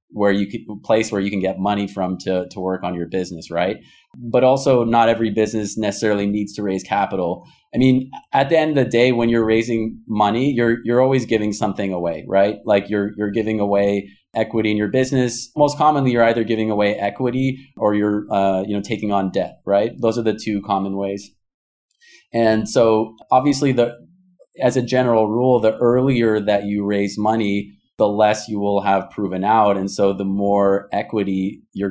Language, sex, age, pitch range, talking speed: English, male, 30-49, 100-120 Hz, 195 wpm